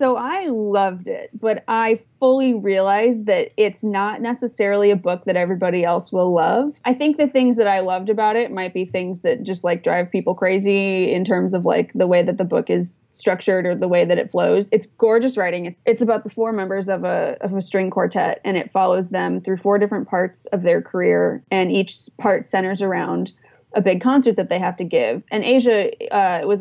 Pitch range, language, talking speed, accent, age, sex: 180-215 Hz, English, 215 wpm, American, 20-39, female